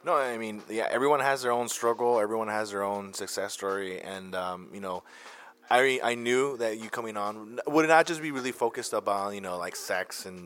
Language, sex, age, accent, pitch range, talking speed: English, male, 20-39, American, 95-115 Hz, 220 wpm